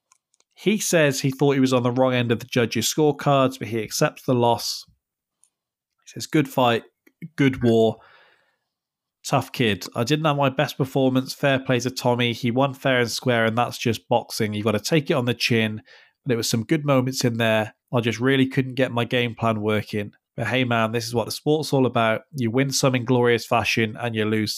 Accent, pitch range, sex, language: British, 115-135 Hz, male, English